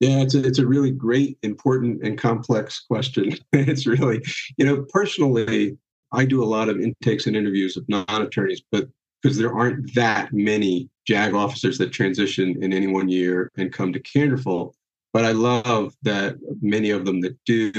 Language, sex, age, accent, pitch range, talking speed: English, male, 50-69, American, 95-115 Hz, 175 wpm